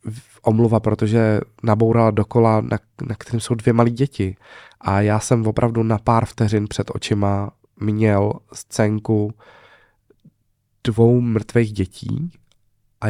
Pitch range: 100-115 Hz